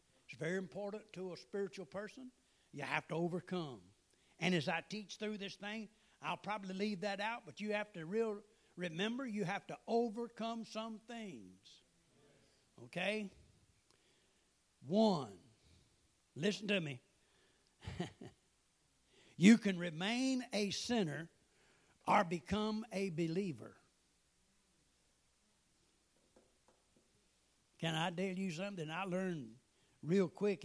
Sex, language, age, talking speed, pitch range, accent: male, English, 60-79, 110 wpm, 150-200 Hz, American